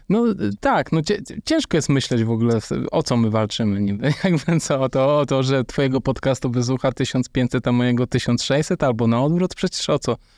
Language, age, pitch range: Polish, 20-39, 115-140 Hz